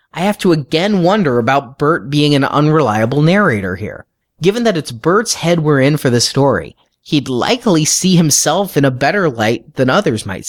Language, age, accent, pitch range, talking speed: English, 30-49, American, 125-165 Hz, 190 wpm